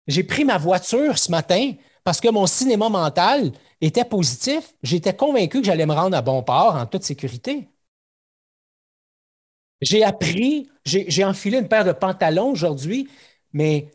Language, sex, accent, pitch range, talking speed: French, male, Canadian, 145-205 Hz, 155 wpm